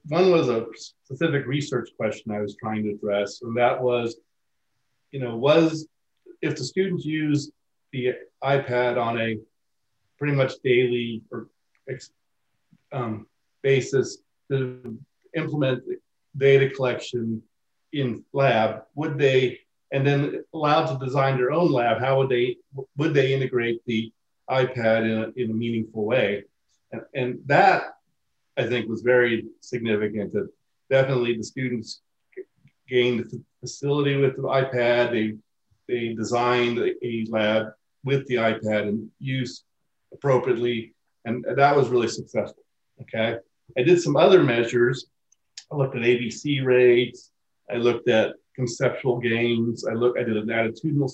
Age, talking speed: 40-59, 140 wpm